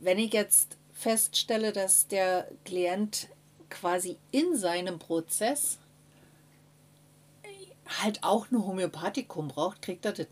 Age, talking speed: 50-69, 110 wpm